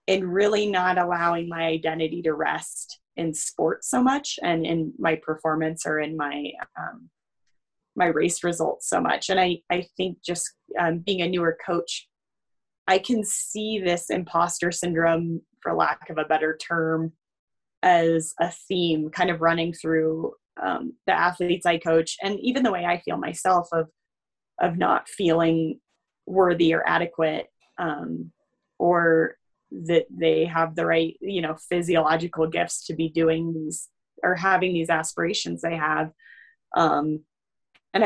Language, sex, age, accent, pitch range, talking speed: English, female, 20-39, American, 160-180 Hz, 150 wpm